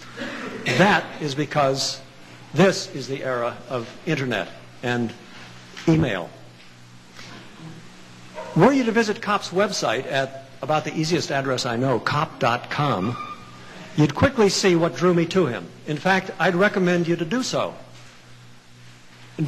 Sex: male